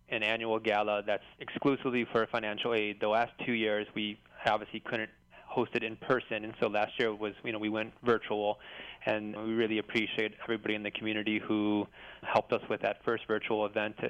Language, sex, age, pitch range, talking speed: English, male, 20-39, 105-115 Hz, 185 wpm